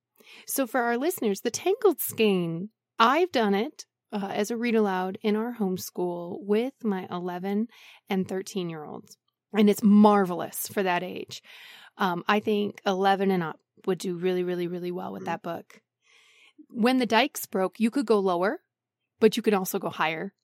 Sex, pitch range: female, 190-220 Hz